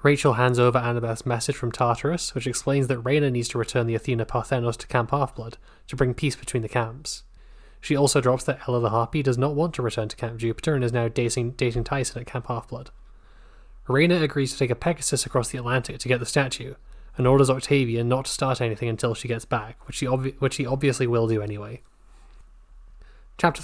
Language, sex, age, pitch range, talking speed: English, male, 20-39, 115-135 Hz, 210 wpm